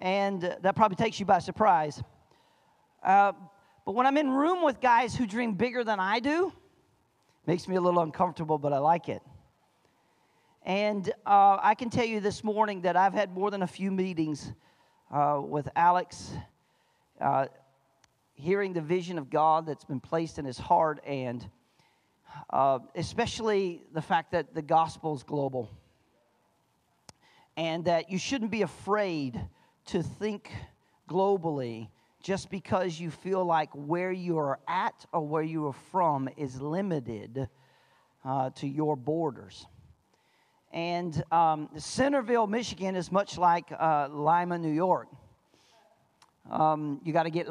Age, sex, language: 40-59, male, English